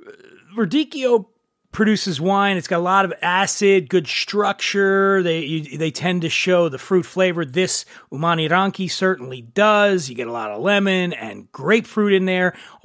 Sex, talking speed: male, 165 wpm